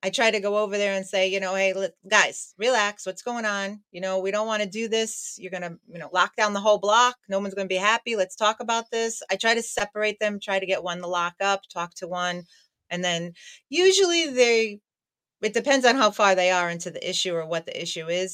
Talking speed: 260 wpm